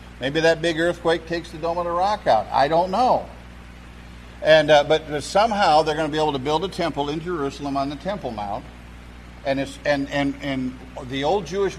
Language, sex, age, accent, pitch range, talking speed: English, male, 50-69, American, 105-155 Hz, 210 wpm